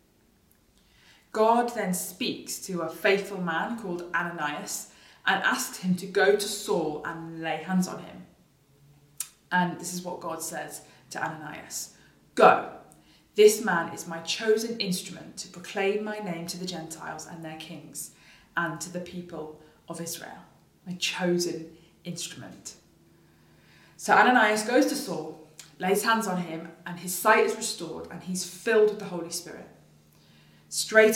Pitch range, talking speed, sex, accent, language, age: 165-210 Hz, 150 wpm, female, British, English, 20-39